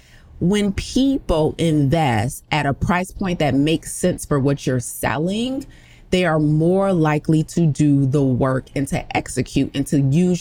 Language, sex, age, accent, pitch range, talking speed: English, female, 30-49, American, 145-175 Hz, 160 wpm